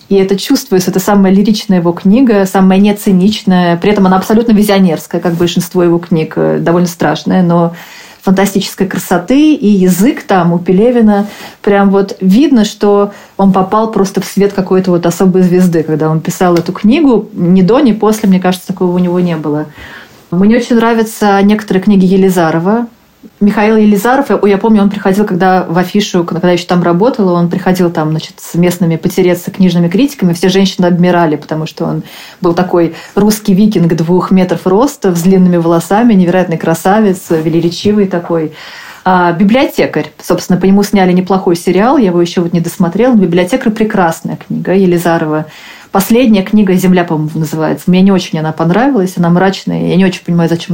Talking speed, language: 170 wpm, Russian